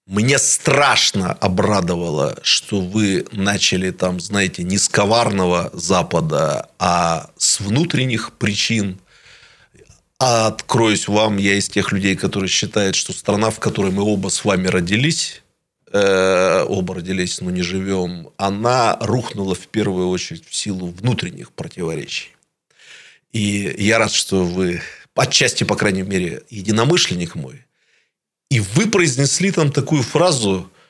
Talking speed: 125 wpm